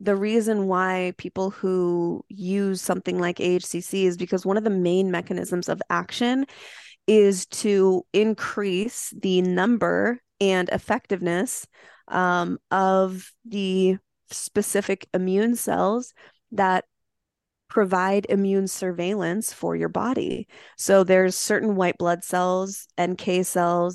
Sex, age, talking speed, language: female, 20-39, 115 wpm, English